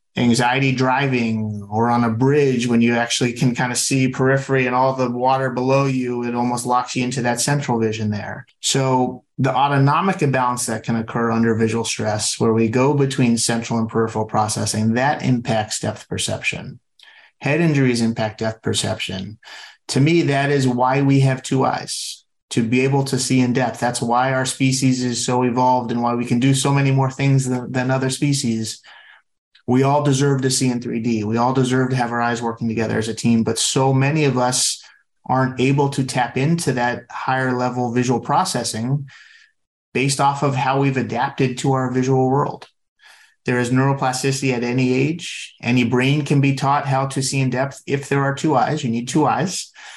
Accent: American